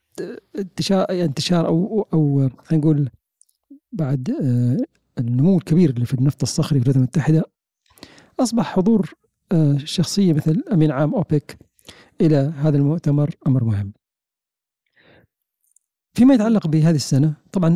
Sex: male